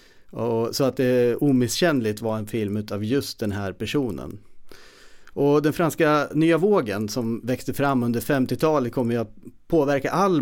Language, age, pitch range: Swedish, 30-49, 110-140 Hz